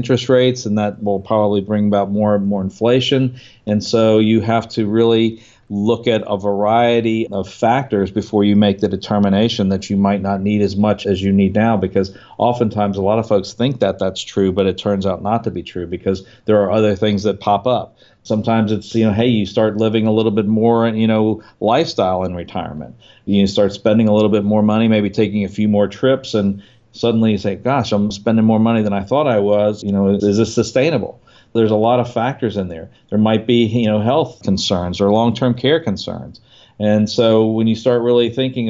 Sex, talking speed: male, 220 wpm